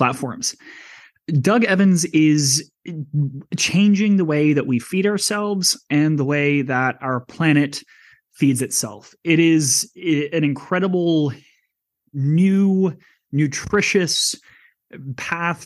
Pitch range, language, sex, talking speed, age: 140-175 Hz, English, male, 100 wpm, 20-39